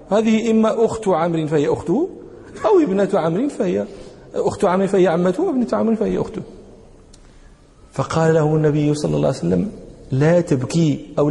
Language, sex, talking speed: English, male, 155 wpm